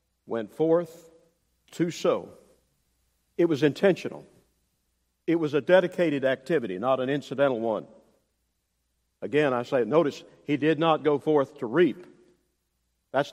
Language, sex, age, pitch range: English, male, 50-69, 150-220 Hz